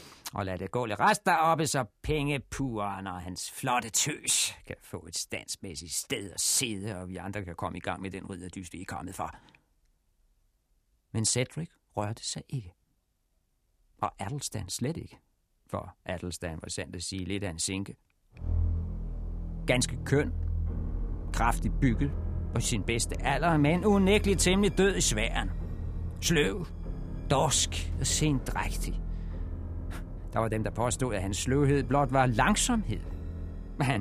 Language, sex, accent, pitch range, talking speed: Danish, male, native, 85-130 Hz, 145 wpm